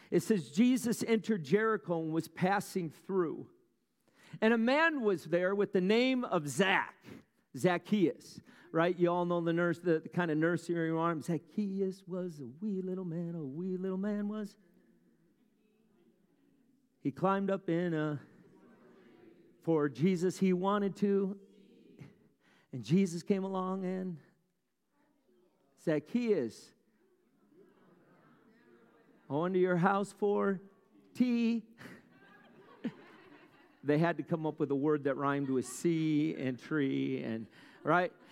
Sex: male